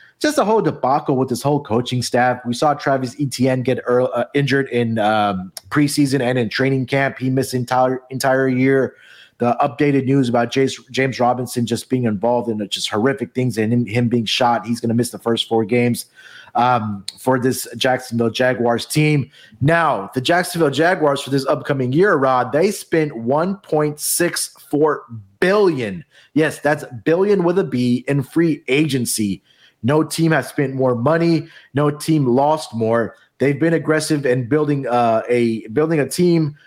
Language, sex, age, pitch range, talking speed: English, male, 30-49, 120-150 Hz, 170 wpm